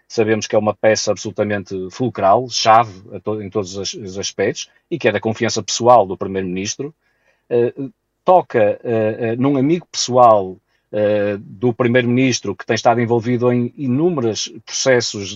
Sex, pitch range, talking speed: male, 110-130 Hz, 155 wpm